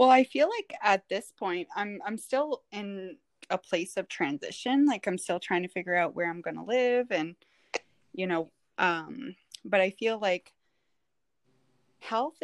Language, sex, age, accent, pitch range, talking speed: English, female, 20-39, American, 165-220 Hz, 175 wpm